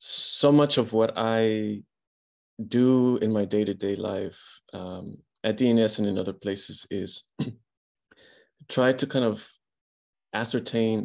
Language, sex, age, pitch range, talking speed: English, male, 30-49, 105-115 Hz, 125 wpm